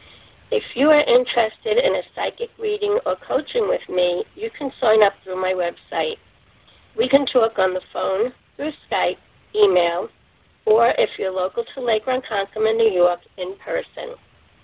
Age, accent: 50-69, American